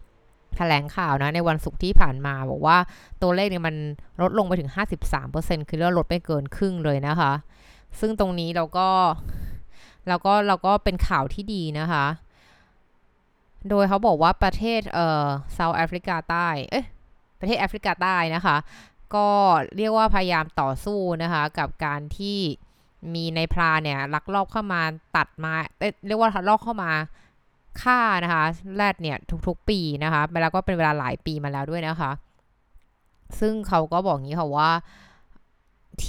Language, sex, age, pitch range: Thai, female, 20-39, 150-190 Hz